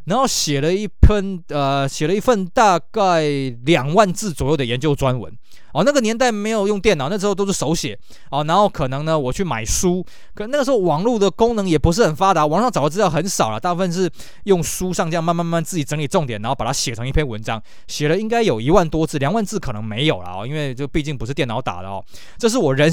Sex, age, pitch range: male, 20-39, 125-180 Hz